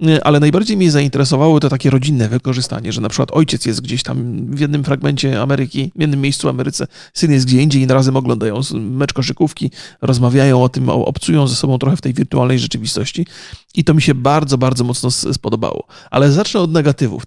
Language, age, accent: Polish, 30-49, native